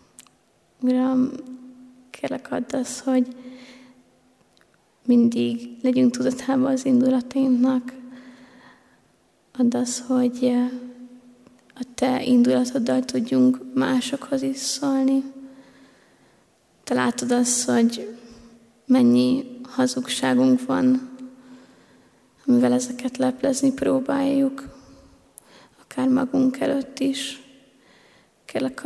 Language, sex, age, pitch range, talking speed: Hungarian, female, 20-39, 250-270 Hz, 75 wpm